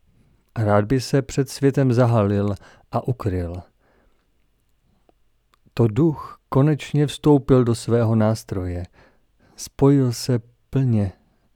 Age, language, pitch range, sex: 40-59, Czech, 110-135 Hz, male